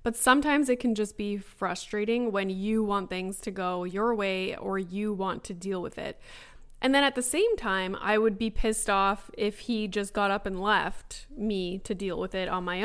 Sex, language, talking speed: female, English, 220 wpm